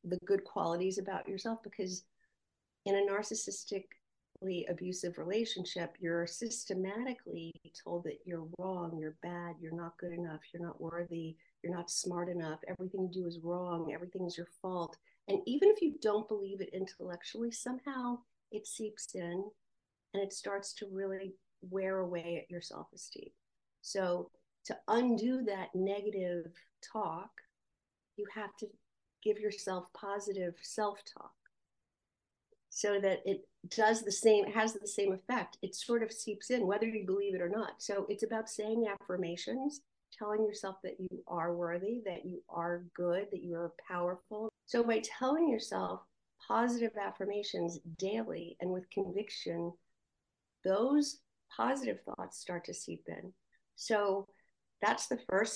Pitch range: 175-215 Hz